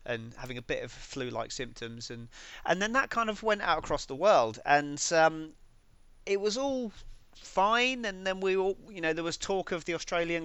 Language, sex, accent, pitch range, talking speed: English, male, British, 125-160 Hz, 205 wpm